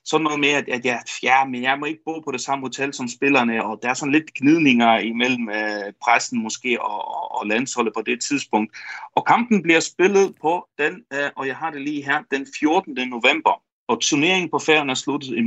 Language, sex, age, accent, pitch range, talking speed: Danish, male, 40-59, native, 135-220 Hz, 225 wpm